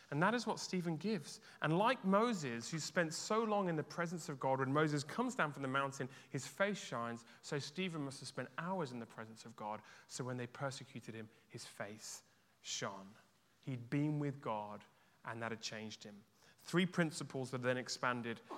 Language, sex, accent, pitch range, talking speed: English, male, British, 120-155 Hz, 195 wpm